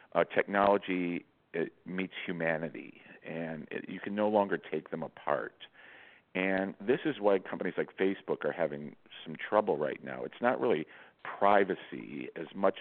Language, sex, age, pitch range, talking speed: English, male, 50-69, 80-95 Hz, 145 wpm